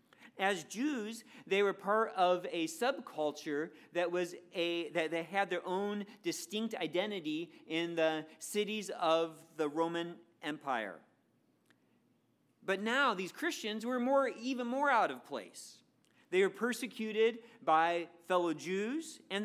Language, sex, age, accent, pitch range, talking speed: English, male, 40-59, American, 170-225 Hz, 135 wpm